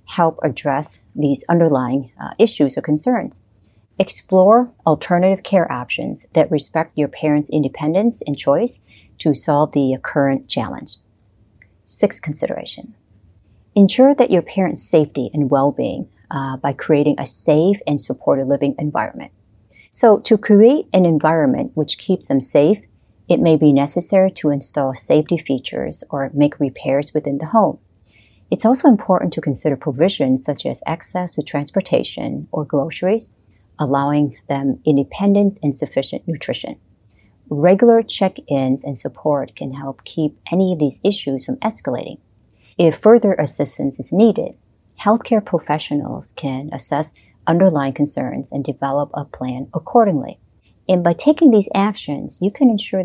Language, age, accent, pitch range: English, 40-59, American, 135-185 Hz